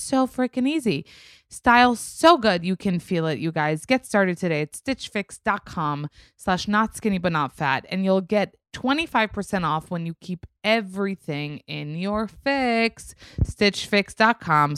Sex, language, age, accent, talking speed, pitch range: female, English, 20-39, American, 145 wpm, 130-165 Hz